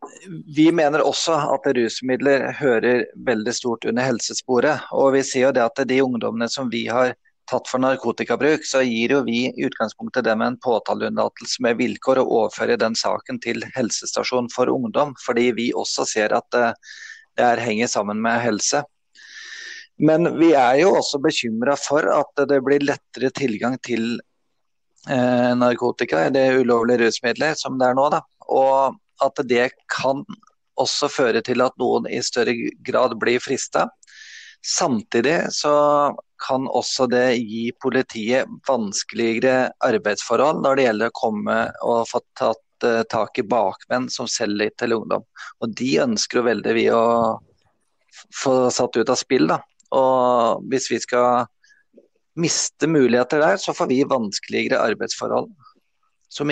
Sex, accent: male, Swedish